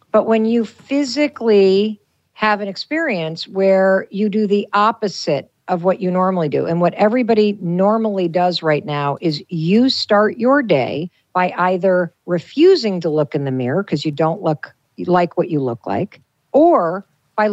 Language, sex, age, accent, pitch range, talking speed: English, female, 50-69, American, 165-210 Hz, 160 wpm